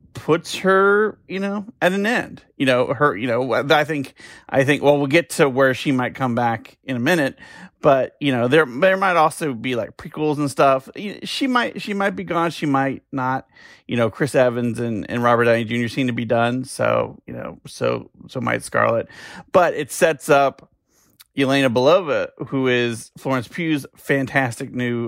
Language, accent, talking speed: English, American, 195 wpm